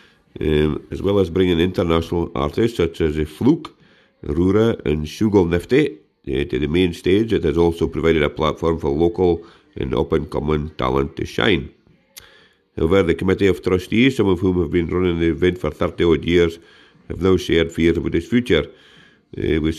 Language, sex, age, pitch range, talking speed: English, male, 50-69, 80-90 Hz, 175 wpm